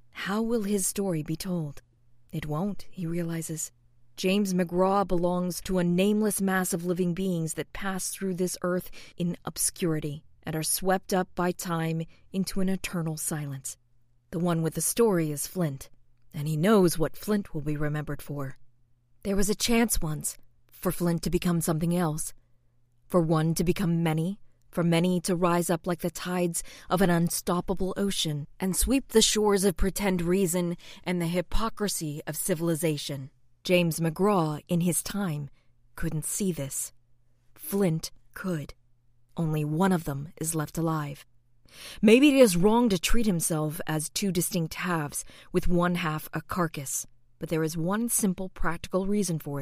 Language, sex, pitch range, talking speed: English, female, 150-185 Hz, 160 wpm